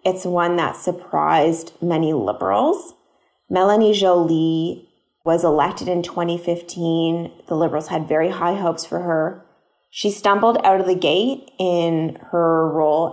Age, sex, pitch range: 20-39, female, 165-195 Hz